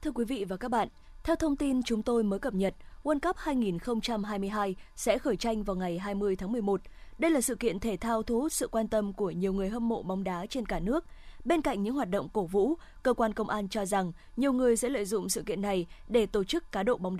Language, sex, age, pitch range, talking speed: Vietnamese, female, 20-39, 200-250 Hz, 250 wpm